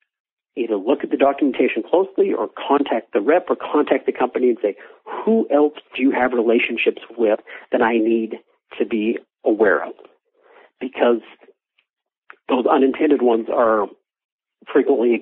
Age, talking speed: 50-69, 145 wpm